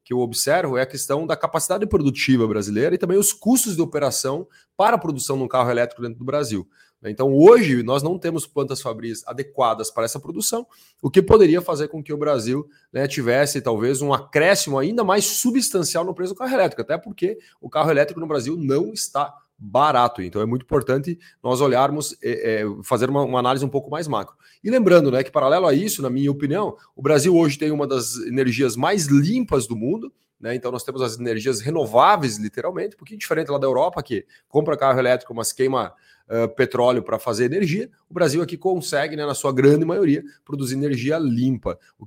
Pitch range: 125-165 Hz